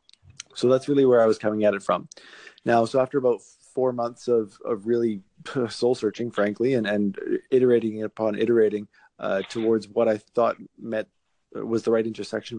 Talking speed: 170 wpm